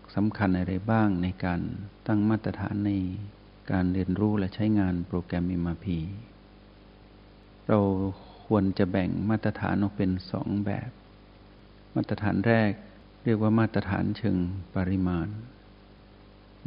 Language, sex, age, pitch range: Thai, male, 60-79, 100-110 Hz